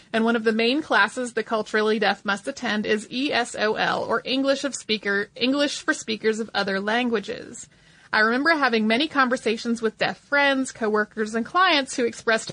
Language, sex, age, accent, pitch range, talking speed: English, female, 30-49, American, 220-275 Hz, 170 wpm